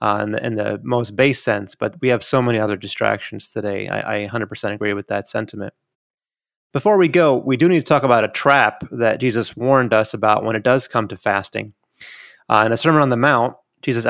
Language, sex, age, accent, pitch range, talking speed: English, male, 30-49, American, 110-140 Hz, 220 wpm